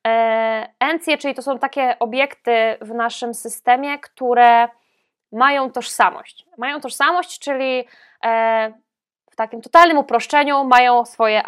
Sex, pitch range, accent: female, 230-280 Hz, native